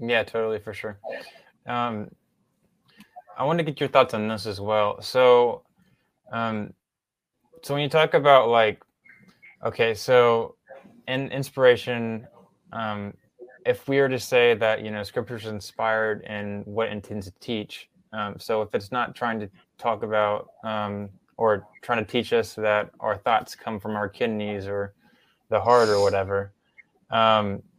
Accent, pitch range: American, 105-130 Hz